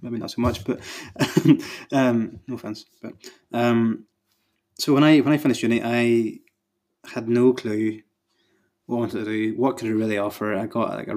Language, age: English, 20-39